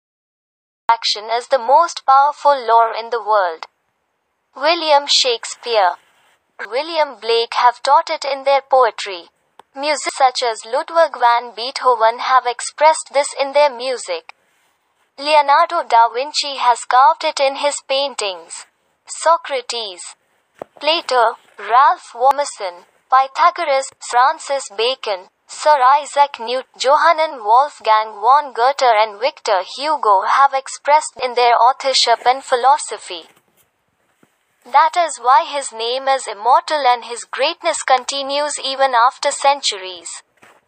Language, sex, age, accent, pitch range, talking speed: Hindi, female, 20-39, native, 240-300 Hz, 120 wpm